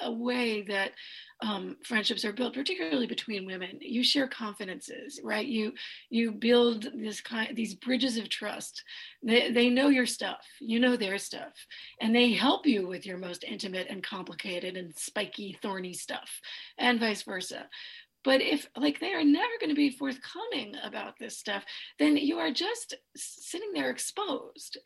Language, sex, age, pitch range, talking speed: English, female, 40-59, 220-300 Hz, 165 wpm